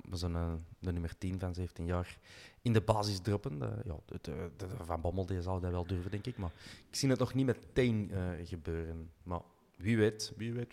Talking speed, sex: 215 wpm, male